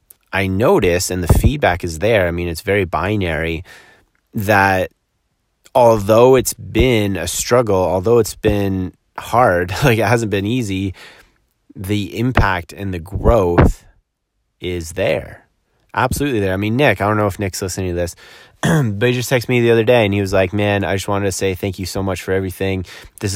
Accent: American